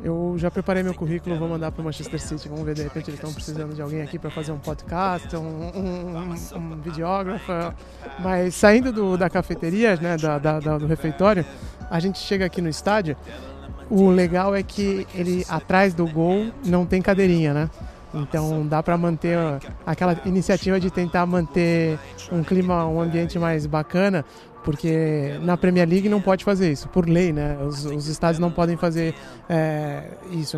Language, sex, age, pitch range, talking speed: Portuguese, male, 20-39, 155-185 Hz, 170 wpm